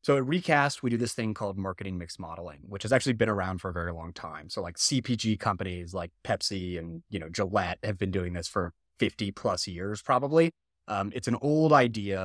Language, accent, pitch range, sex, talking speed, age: English, American, 95-125 Hz, male, 220 wpm, 20-39